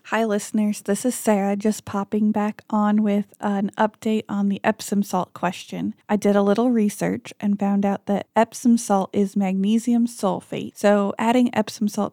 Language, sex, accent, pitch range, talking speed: English, female, American, 195-215 Hz, 175 wpm